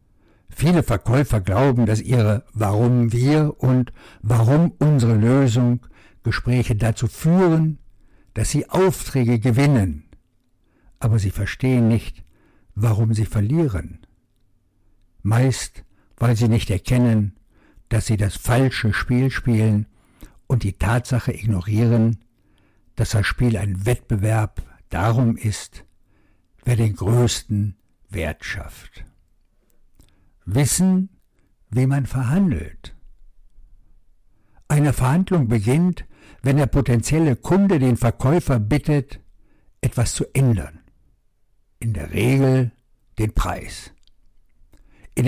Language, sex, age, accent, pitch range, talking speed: German, male, 60-79, German, 105-135 Hz, 100 wpm